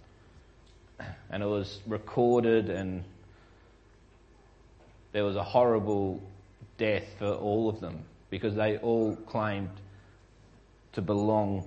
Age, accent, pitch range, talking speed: 30-49, Australian, 100-130 Hz, 105 wpm